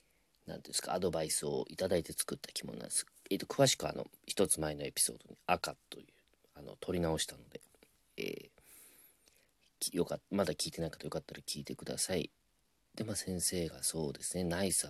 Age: 40-59